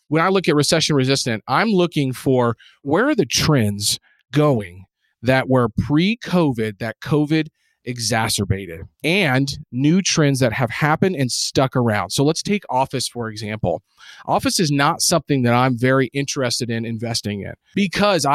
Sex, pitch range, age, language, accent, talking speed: male, 120-150 Hz, 40-59, English, American, 150 wpm